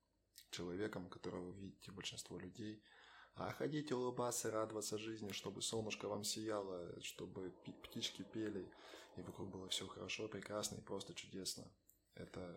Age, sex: 20-39, male